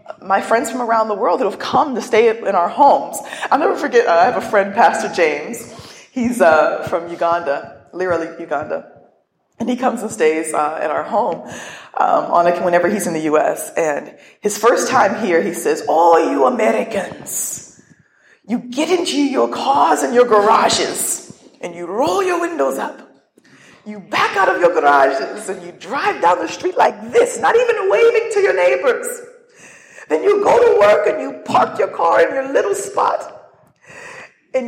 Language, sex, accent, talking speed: English, female, American, 185 wpm